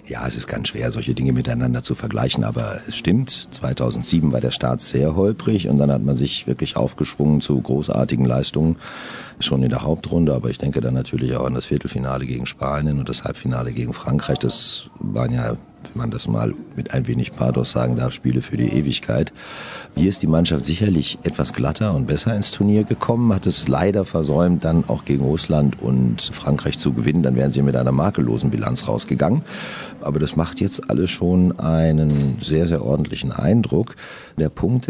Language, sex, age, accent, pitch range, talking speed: German, male, 50-69, German, 65-85 Hz, 190 wpm